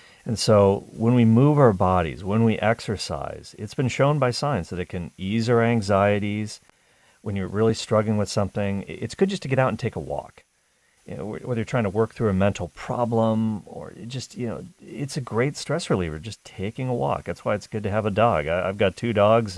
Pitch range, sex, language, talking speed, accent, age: 90-125 Hz, male, English, 225 wpm, American, 40-59